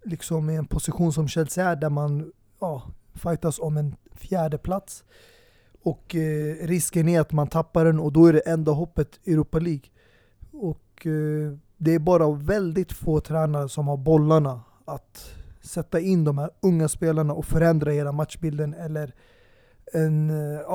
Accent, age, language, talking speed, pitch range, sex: native, 20-39, Swedish, 160 wpm, 145-170 Hz, male